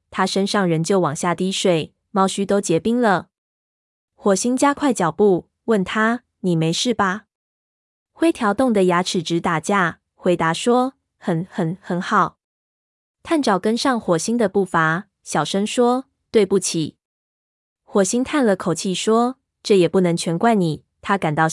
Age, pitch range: 20-39, 170-215 Hz